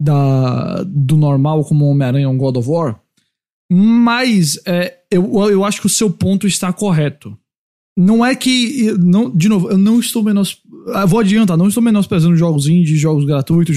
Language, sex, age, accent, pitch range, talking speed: English, male, 20-39, Brazilian, 160-205 Hz, 180 wpm